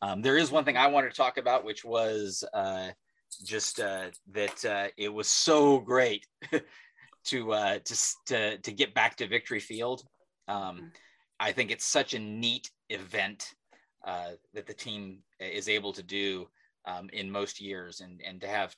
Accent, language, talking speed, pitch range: American, English, 175 wpm, 95-115 Hz